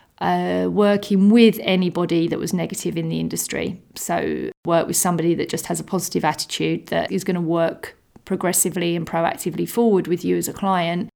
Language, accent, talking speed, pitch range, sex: English, British, 185 wpm, 175-205 Hz, female